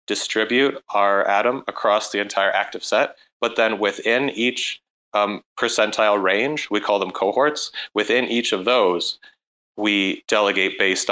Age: 30-49